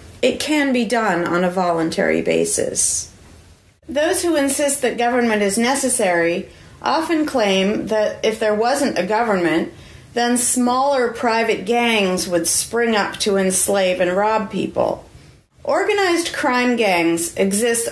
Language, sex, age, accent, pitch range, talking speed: English, female, 40-59, American, 185-240 Hz, 130 wpm